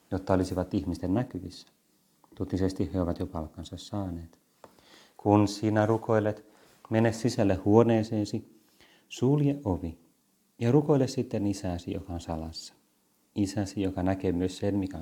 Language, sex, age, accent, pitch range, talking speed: Finnish, male, 30-49, native, 95-115 Hz, 125 wpm